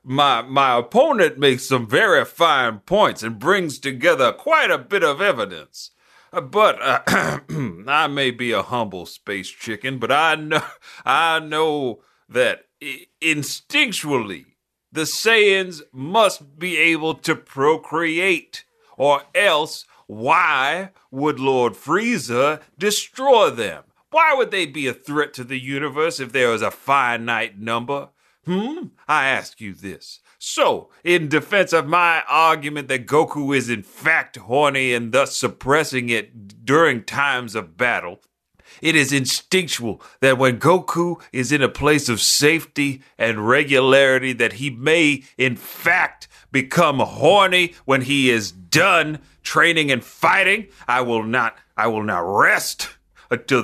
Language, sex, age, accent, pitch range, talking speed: English, male, 40-59, American, 130-165 Hz, 135 wpm